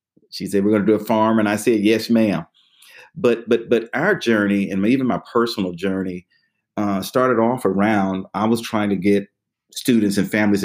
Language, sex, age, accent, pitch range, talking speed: English, male, 30-49, American, 95-110 Hz, 195 wpm